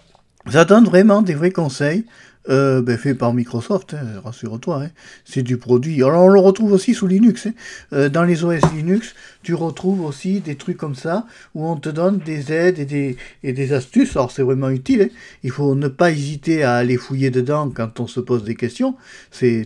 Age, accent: 50-69, French